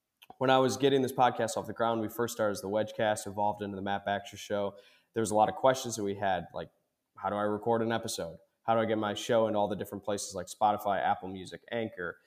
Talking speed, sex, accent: 260 wpm, male, American